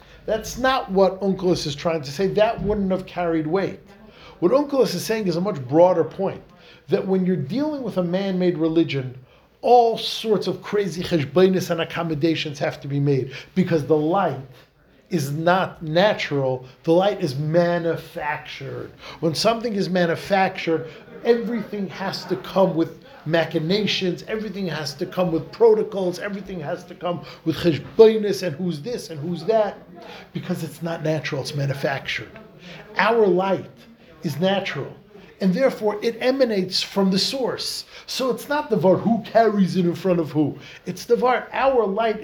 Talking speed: 160 wpm